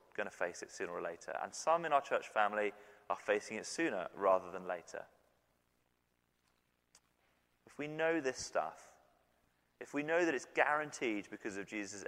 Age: 30-49